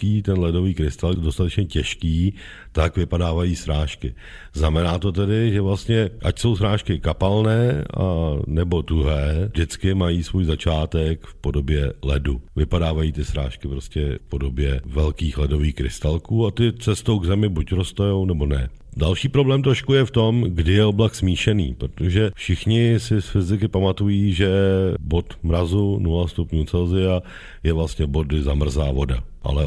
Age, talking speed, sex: 50-69, 150 wpm, male